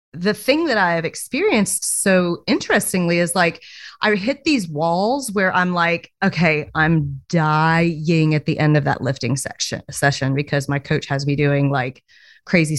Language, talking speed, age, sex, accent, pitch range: English, 170 wpm, 30-49, female, American, 155-195 Hz